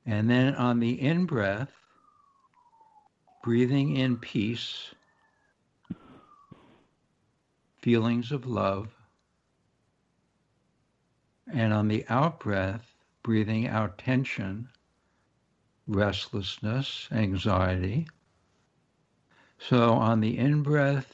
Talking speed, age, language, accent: 70 wpm, 60-79, English, American